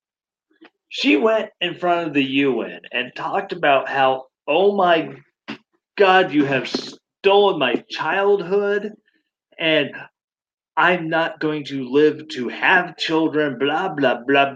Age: 30-49